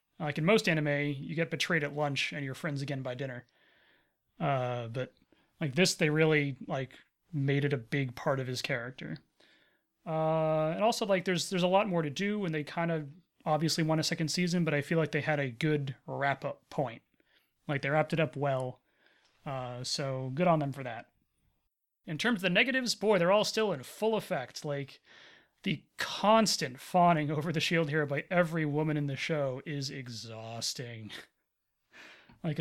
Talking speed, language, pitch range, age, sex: 190 wpm, English, 135-170 Hz, 30-49, male